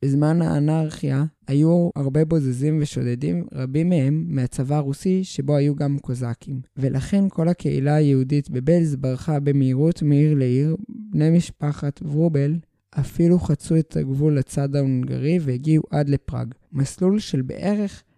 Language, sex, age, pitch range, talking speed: Hebrew, male, 20-39, 140-170 Hz, 125 wpm